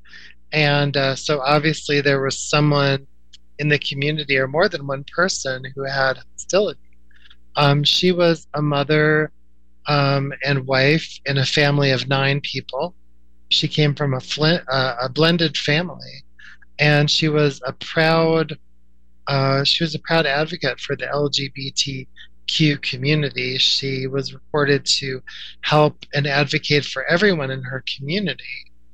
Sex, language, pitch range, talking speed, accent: male, English, 135-155 Hz, 140 wpm, American